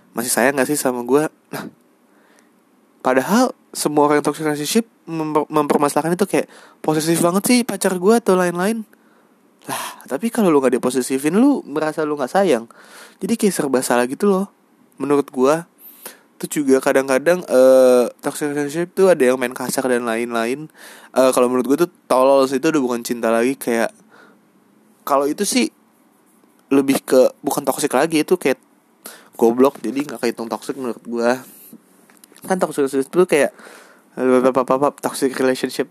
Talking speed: 155 wpm